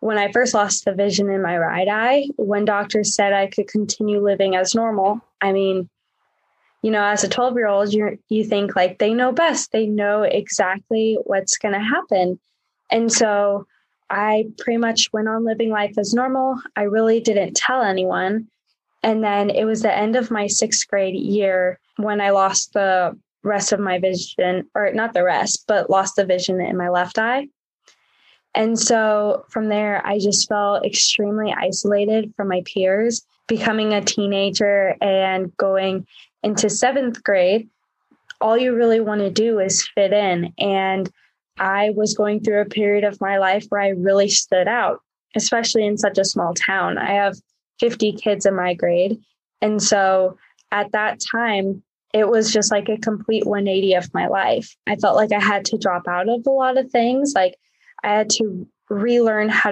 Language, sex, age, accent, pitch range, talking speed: English, female, 10-29, American, 195-220 Hz, 180 wpm